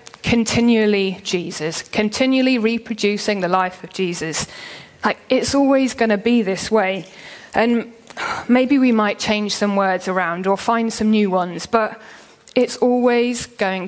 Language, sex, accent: English, female, British